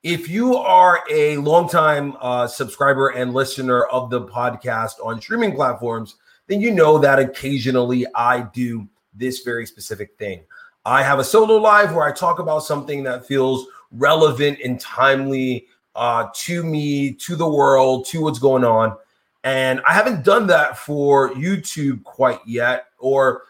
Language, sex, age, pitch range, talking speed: English, male, 30-49, 125-170 Hz, 155 wpm